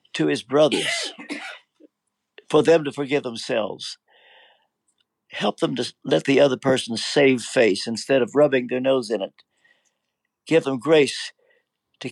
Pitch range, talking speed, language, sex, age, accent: 125-150 Hz, 140 wpm, English, male, 60-79, American